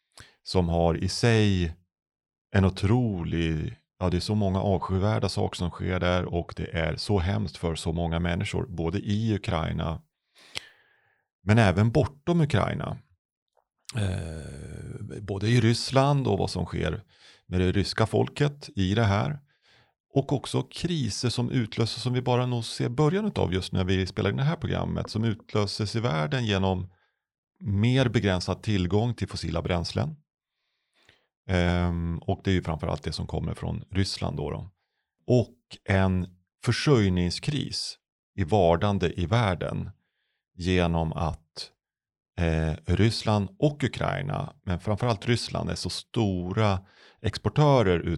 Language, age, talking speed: Swedish, 30-49, 135 wpm